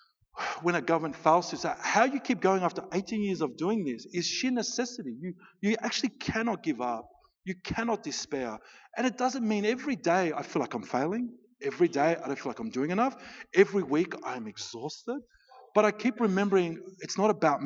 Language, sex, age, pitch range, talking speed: English, male, 50-69, 155-220 Hz, 200 wpm